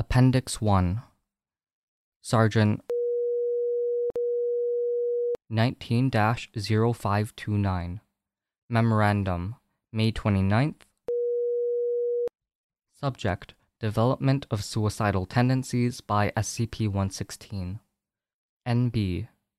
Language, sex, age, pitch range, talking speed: English, male, 20-39, 105-135 Hz, 45 wpm